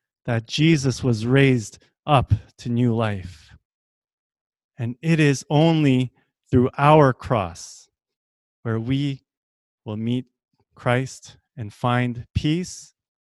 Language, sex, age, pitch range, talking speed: English, male, 30-49, 120-160 Hz, 105 wpm